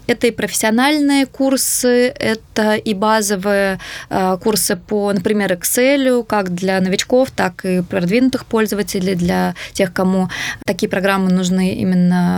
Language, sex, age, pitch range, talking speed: Russian, female, 20-39, 195-240 Hz, 125 wpm